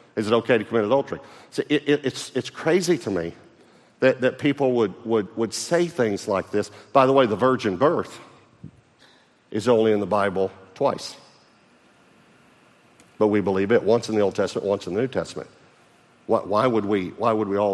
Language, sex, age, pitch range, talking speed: English, male, 50-69, 110-140 Hz, 195 wpm